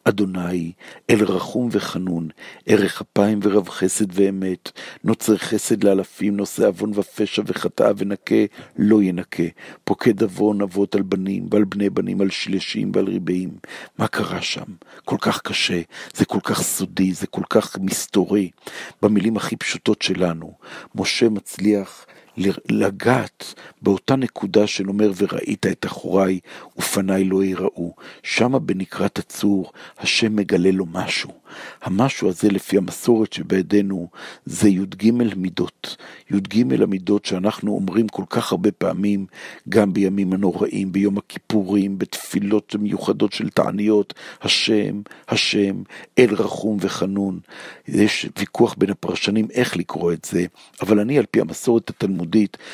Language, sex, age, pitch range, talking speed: Hebrew, male, 50-69, 95-105 Hz, 125 wpm